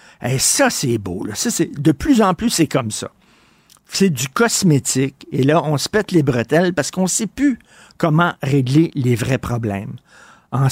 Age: 60-79